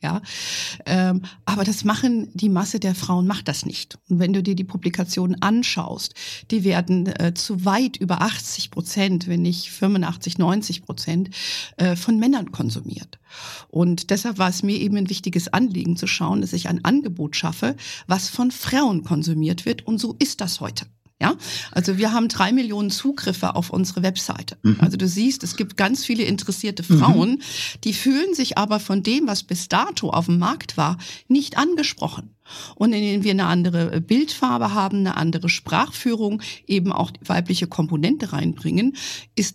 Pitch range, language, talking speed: 175-220 Hz, German, 165 wpm